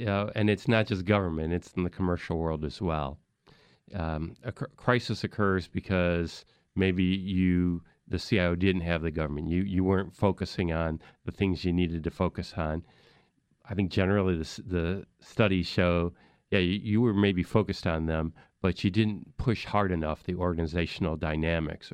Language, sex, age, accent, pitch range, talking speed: English, male, 40-59, American, 85-100 Hz, 170 wpm